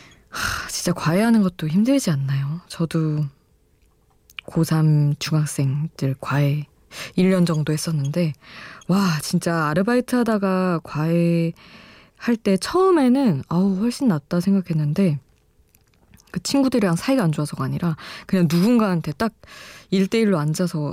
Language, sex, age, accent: Korean, female, 20-39, native